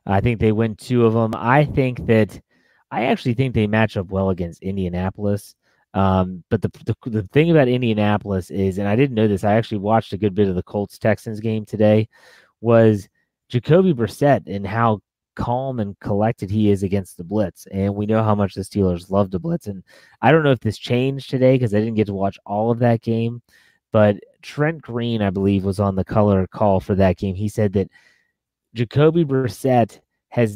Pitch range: 100-120 Hz